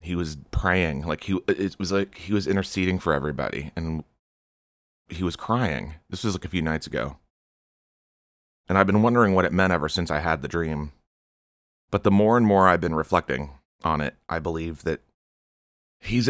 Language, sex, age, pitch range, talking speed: English, male, 30-49, 75-95 Hz, 190 wpm